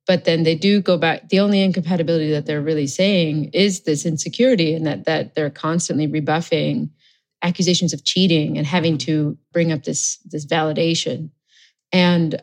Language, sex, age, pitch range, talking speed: English, female, 30-49, 155-180 Hz, 165 wpm